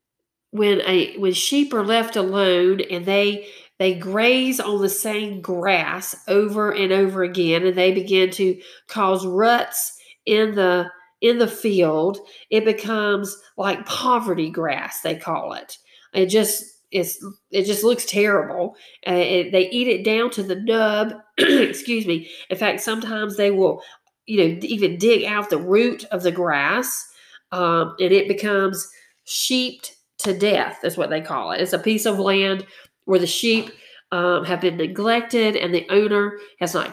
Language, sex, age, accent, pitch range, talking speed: English, female, 40-59, American, 185-220 Hz, 160 wpm